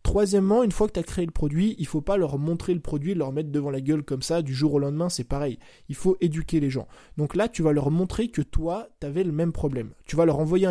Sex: male